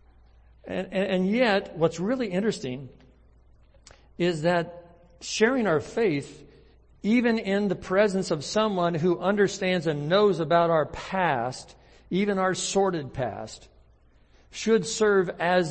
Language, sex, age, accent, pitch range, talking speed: English, male, 60-79, American, 125-175 Hz, 120 wpm